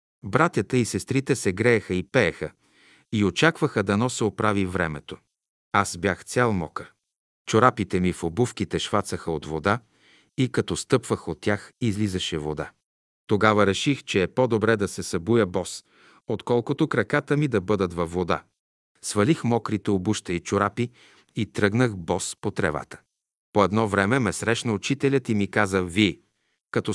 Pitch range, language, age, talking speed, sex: 95-125 Hz, Bulgarian, 50-69, 150 wpm, male